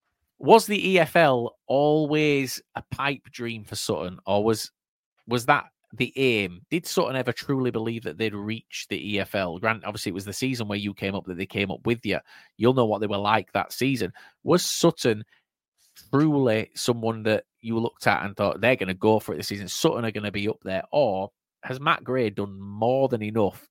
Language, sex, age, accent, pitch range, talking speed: English, male, 30-49, British, 100-125 Hz, 210 wpm